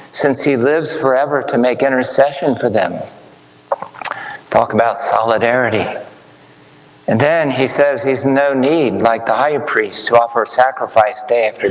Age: 50-69